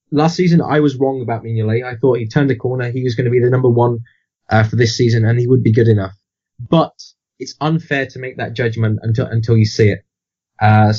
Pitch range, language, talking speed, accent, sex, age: 110-135 Hz, English, 240 wpm, British, male, 20-39